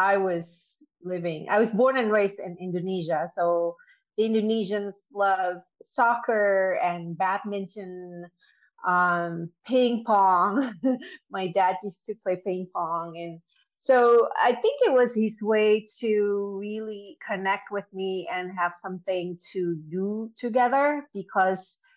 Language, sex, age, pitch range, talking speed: English, female, 30-49, 175-215 Hz, 130 wpm